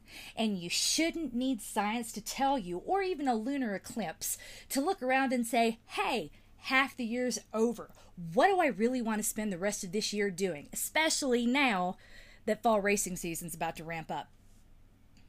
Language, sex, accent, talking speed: English, female, American, 180 wpm